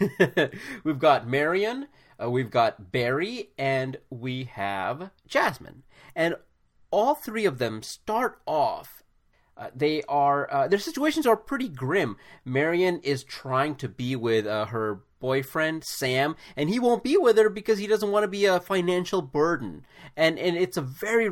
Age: 30-49